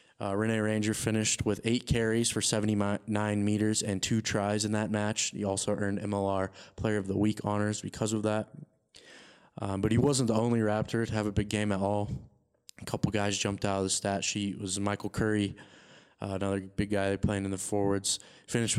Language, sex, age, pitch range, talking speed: English, male, 20-39, 100-110 Hz, 205 wpm